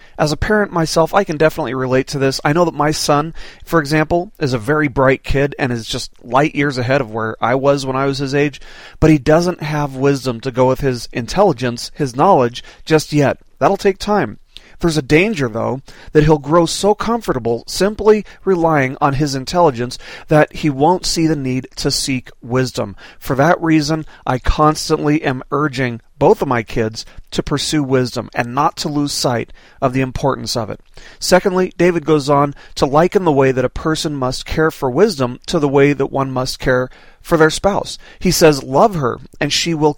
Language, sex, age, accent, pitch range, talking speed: English, male, 40-59, American, 130-170 Hz, 200 wpm